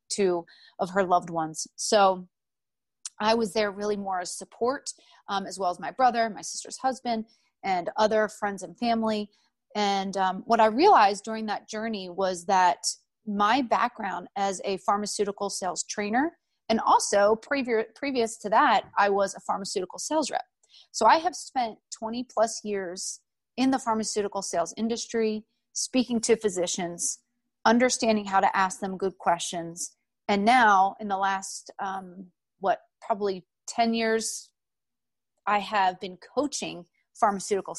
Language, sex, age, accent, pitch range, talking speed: English, female, 30-49, American, 190-235 Hz, 150 wpm